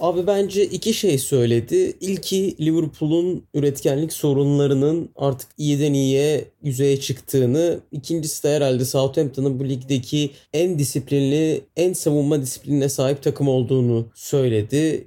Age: 30-49